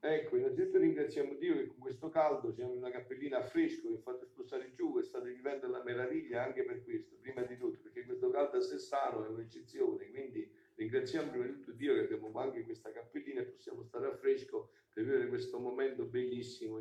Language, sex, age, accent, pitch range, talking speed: Italian, male, 50-69, native, 335-390 Hz, 205 wpm